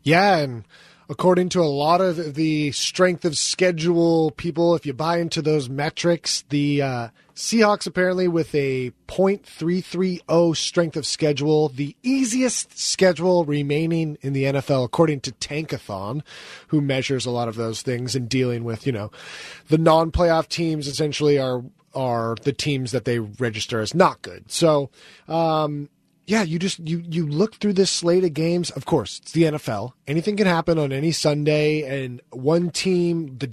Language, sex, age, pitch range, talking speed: English, male, 30-49, 135-175 Hz, 175 wpm